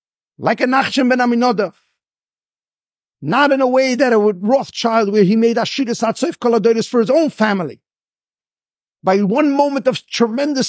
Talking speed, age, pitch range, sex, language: 140 wpm, 50-69, 215-270 Hz, male, English